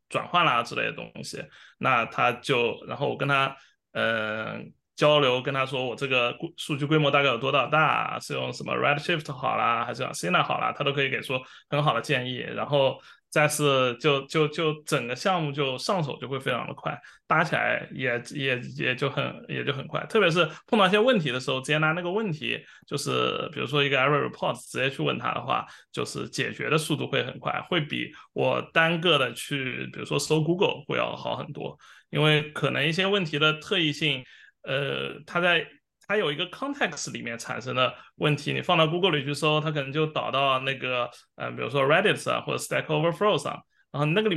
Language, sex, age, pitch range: Chinese, male, 20-39, 135-165 Hz